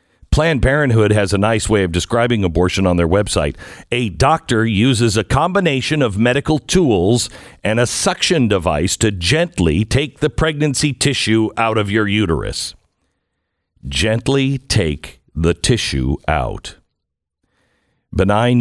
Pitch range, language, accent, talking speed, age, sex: 90-120 Hz, English, American, 130 wpm, 50-69, male